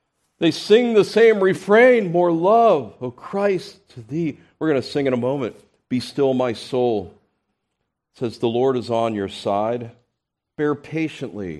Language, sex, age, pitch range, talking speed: English, male, 40-59, 100-150 Hz, 165 wpm